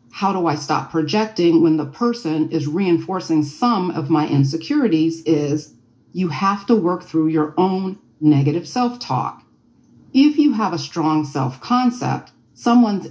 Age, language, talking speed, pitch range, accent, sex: 40-59, English, 140 wpm, 150-215 Hz, American, female